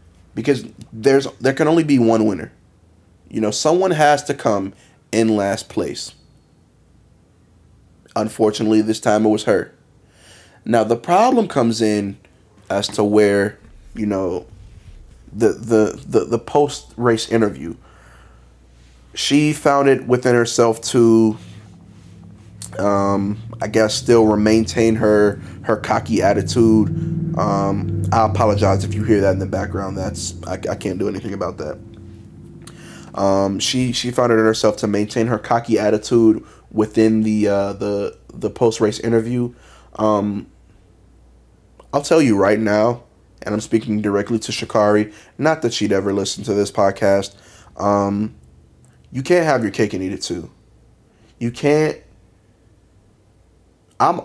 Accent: American